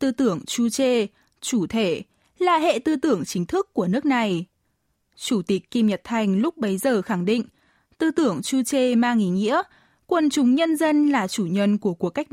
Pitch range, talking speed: 195-275 Hz, 205 wpm